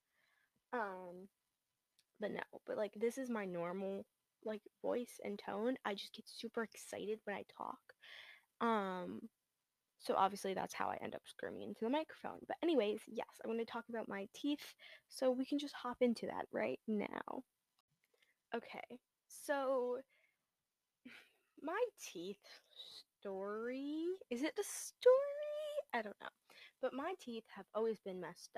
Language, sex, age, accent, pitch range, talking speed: English, female, 10-29, American, 215-290 Hz, 150 wpm